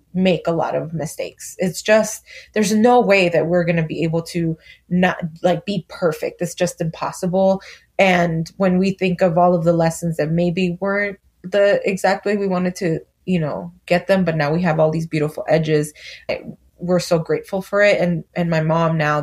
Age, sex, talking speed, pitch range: 20-39, female, 200 wpm, 160-185 Hz